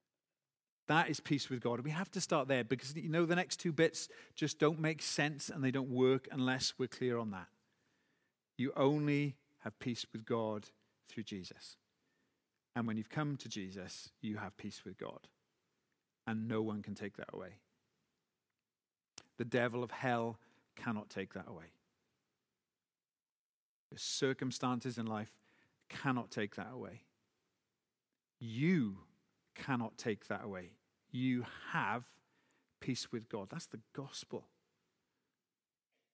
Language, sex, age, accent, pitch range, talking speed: English, male, 40-59, British, 115-155 Hz, 140 wpm